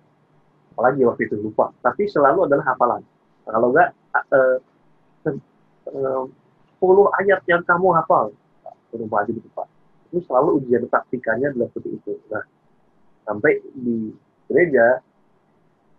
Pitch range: 120-180 Hz